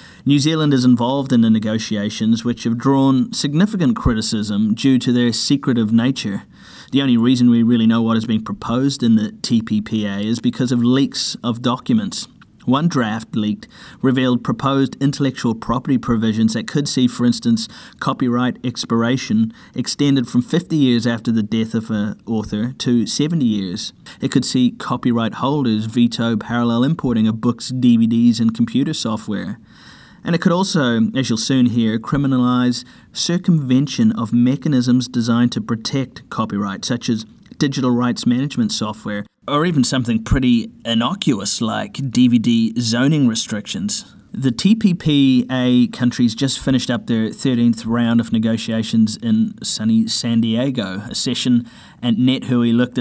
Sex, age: male, 30-49